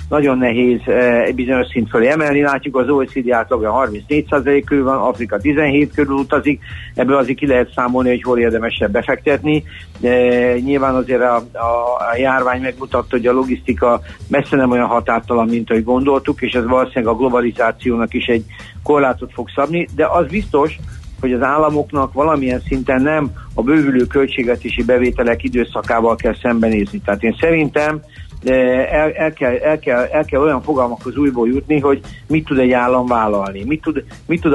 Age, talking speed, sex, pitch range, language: 60-79, 165 wpm, male, 120-140 Hz, Hungarian